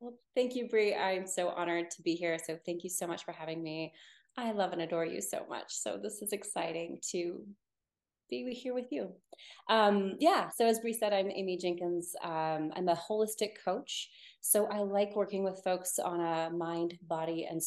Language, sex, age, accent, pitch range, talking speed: English, female, 30-49, American, 160-200 Hz, 200 wpm